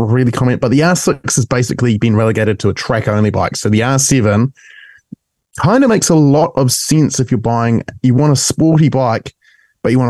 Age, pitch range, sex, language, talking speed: 20-39, 110-140 Hz, male, English, 200 wpm